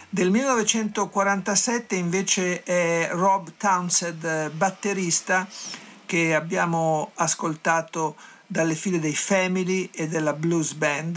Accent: native